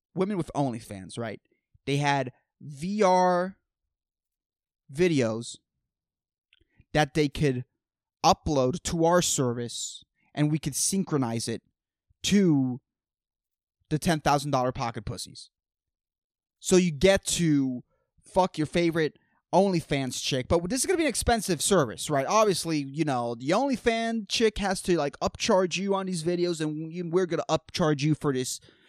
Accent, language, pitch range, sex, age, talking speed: American, English, 140-195 Hz, male, 20-39, 135 wpm